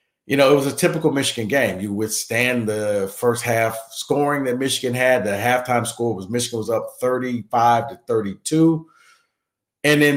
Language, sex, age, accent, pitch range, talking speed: English, male, 50-69, American, 110-135 Hz, 170 wpm